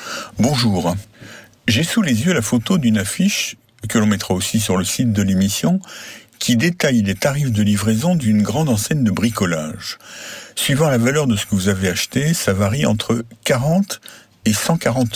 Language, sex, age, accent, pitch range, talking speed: French, male, 60-79, French, 105-160 Hz, 175 wpm